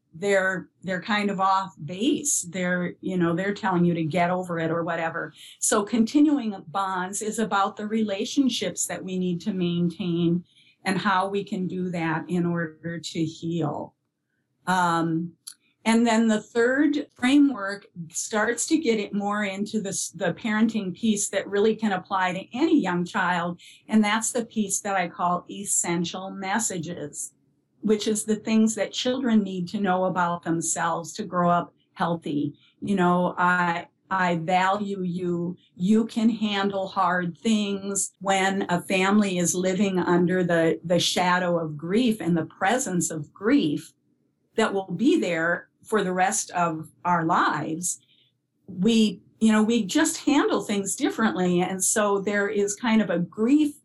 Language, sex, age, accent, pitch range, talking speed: English, female, 50-69, American, 175-215 Hz, 155 wpm